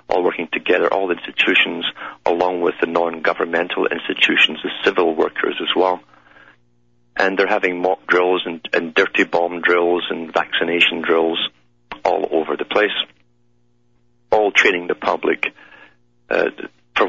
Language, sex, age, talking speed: English, male, 50-69, 135 wpm